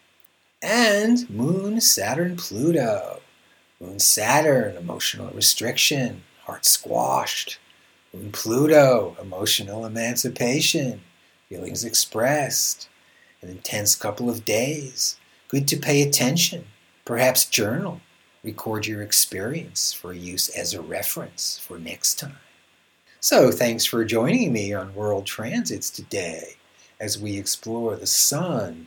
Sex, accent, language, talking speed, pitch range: male, American, English, 110 wpm, 100-155 Hz